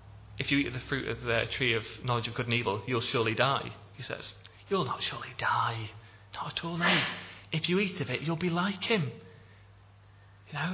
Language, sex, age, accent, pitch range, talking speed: English, male, 30-49, British, 105-145 Hz, 220 wpm